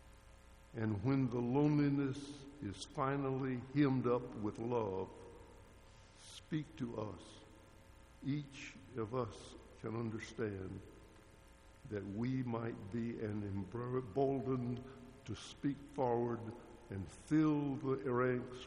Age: 60-79